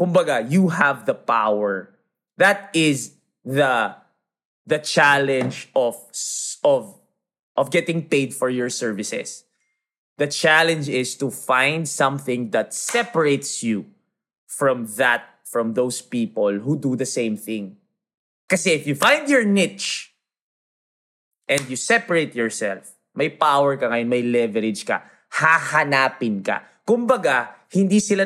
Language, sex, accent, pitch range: English, male, Filipino, 135-200 Hz